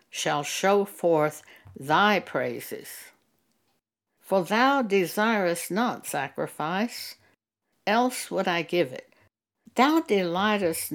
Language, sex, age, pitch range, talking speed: English, female, 60-79, 150-205 Hz, 95 wpm